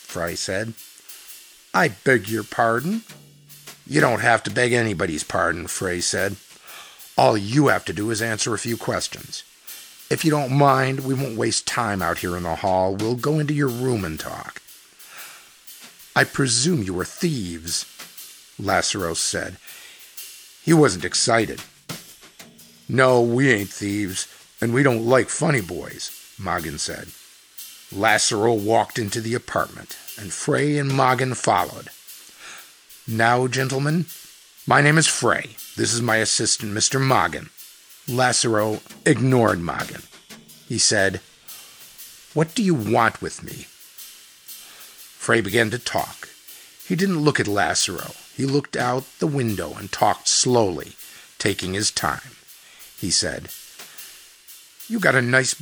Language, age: English, 50-69